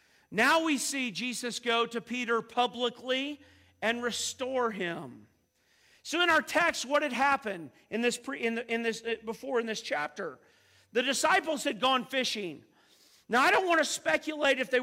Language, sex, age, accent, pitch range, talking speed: English, male, 40-59, American, 230-300 Hz, 170 wpm